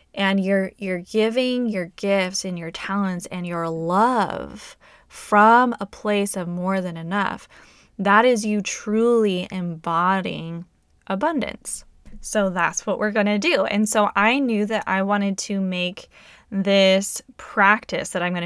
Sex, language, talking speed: female, English, 150 wpm